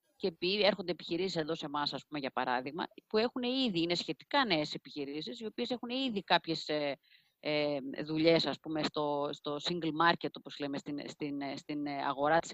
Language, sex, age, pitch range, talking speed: Greek, female, 30-49, 145-215 Hz, 170 wpm